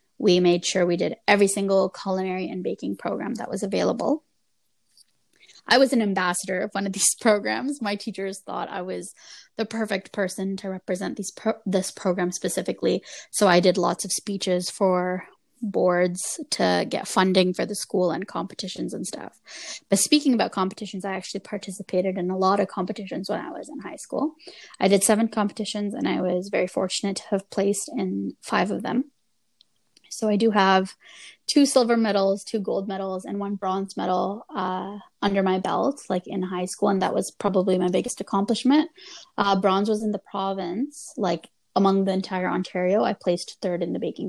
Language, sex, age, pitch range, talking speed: English, female, 20-39, 185-215 Hz, 185 wpm